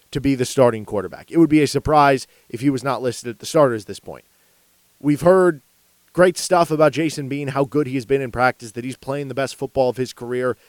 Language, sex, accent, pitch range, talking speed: English, male, American, 125-160 Hz, 240 wpm